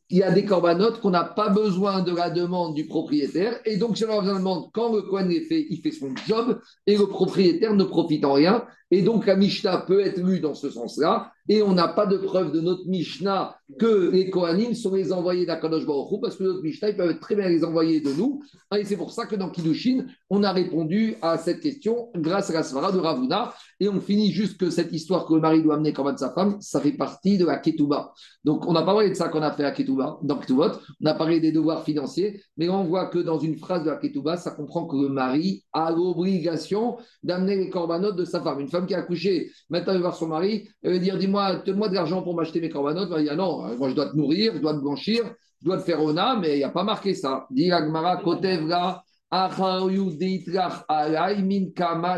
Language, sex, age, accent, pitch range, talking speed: French, male, 50-69, French, 160-200 Hz, 240 wpm